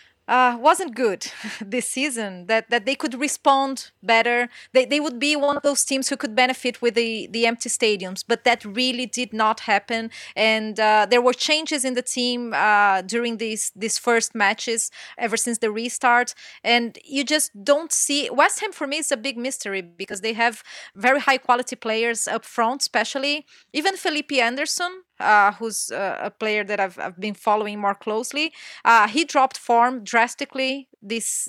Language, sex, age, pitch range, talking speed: English, female, 20-39, 210-265 Hz, 180 wpm